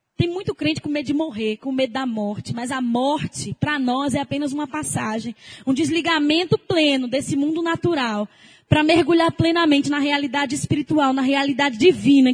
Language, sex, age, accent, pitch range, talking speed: English, female, 10-29, Brazilian, 265-345 Hz, 170 wpm